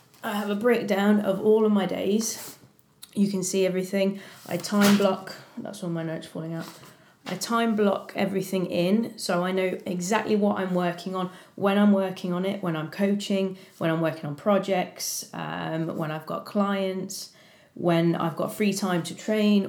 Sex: female